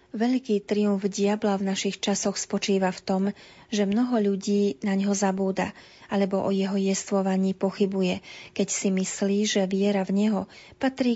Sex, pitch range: female, 195-210 Hz